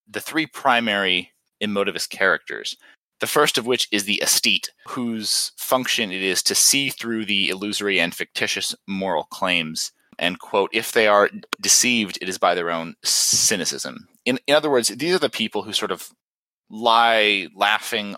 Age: 20-39